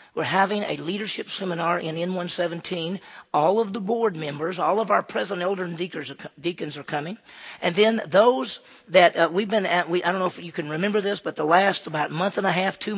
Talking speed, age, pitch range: 215 wpm, 40-59, 155-195 Hz